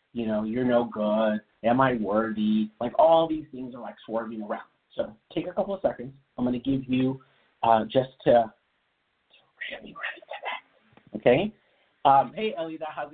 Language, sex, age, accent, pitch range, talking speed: English, male, 30-49, American, 115-175 Hz, 165 wpm